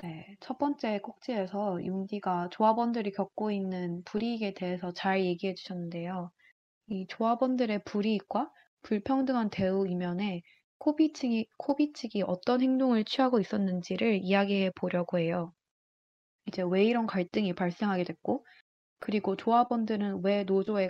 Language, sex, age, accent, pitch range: Korean, female, 20-39, native, 185-235 Hz